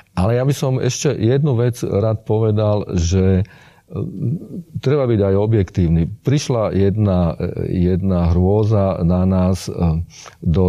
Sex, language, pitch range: male, Slovak, 90-110 Hz